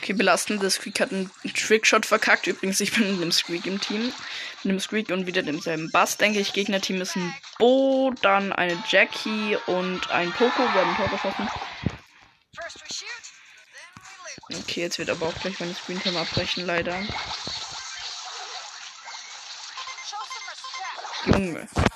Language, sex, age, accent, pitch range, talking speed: German, female, 20-39, German, 175-215 Hz, 135 wpm